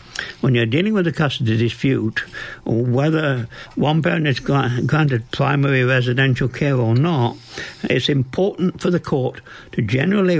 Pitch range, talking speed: 120-150 Hz, 140 wpm